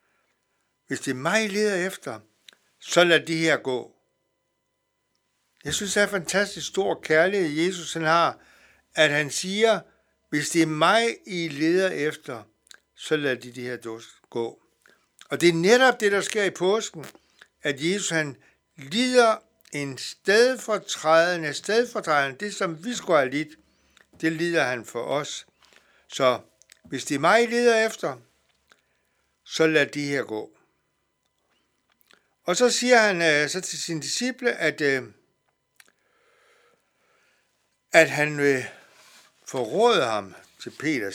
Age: 60-79